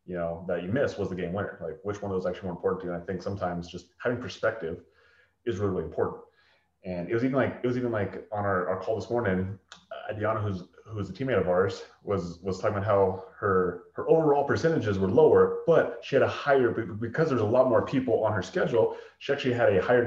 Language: English